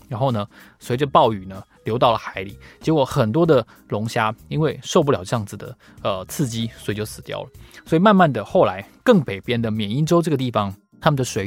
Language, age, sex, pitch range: Chinese, 20-39, male, 110-160 Hz